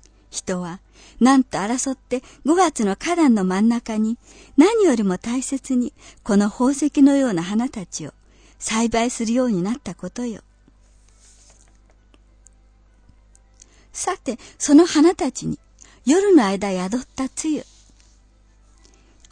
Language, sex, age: Japanese, male, 60-79